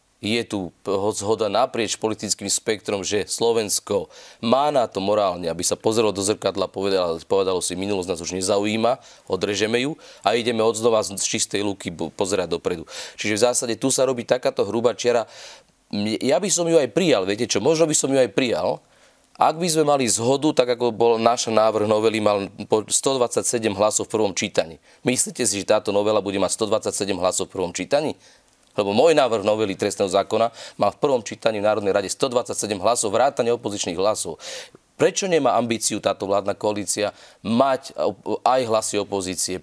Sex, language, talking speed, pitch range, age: male, Slovak, 175 wpm, 105-145 Hz, 30-49